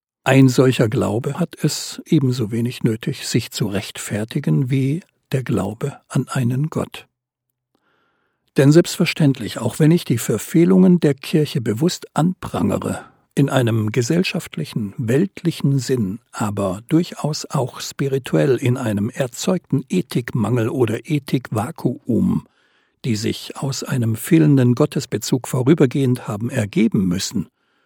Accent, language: German, German